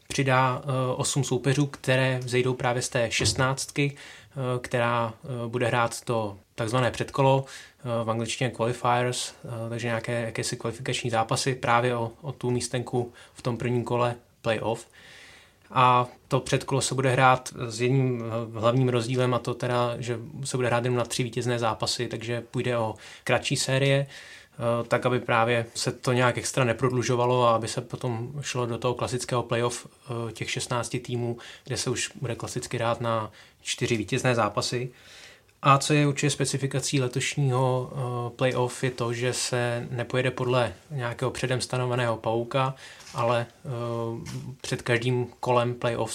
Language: Czech